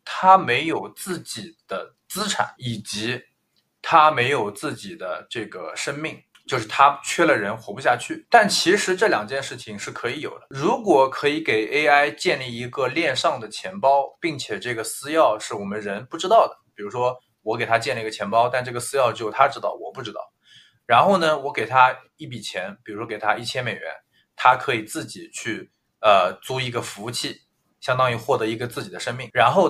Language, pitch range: Chinese, 115-145 Hz